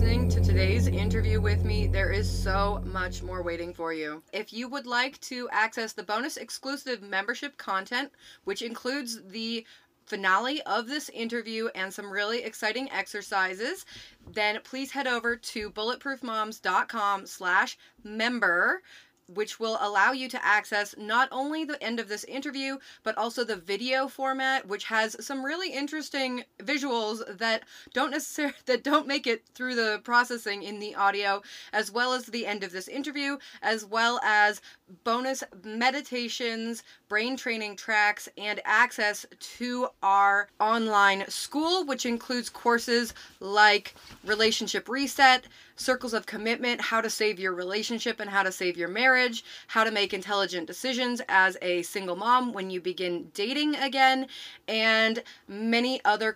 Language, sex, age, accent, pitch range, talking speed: English, female, 30-49, American, 200-250 Hz, 150 wpm